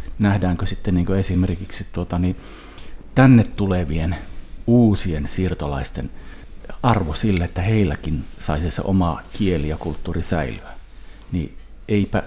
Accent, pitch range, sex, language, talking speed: native, 85-105 Hz, male, Finnish, 110 wpm